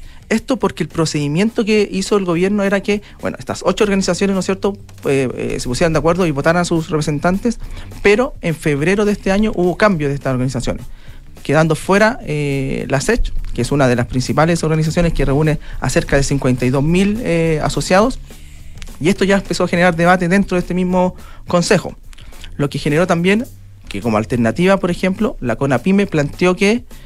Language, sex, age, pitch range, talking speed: Spanish, male, 40-59, 135-190 Hz, 185 wpm